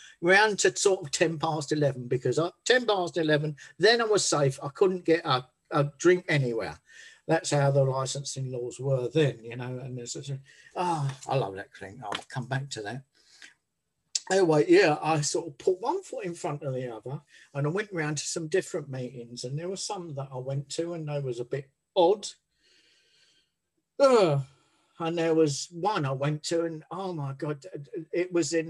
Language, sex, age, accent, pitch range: Japanese, male, 50-69, British, 135-170 Hz